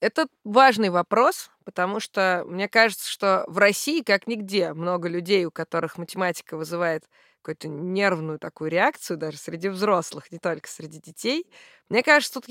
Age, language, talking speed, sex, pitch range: 20-39, Russian, 155 wpm, female, 180-230 Hz